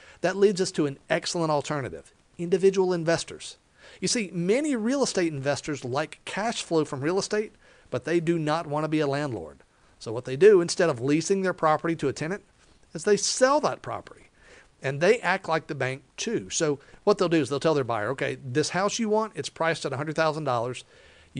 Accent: American